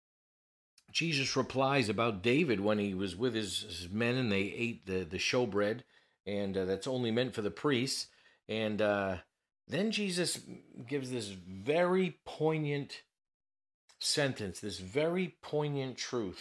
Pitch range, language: 100-135 Hz, English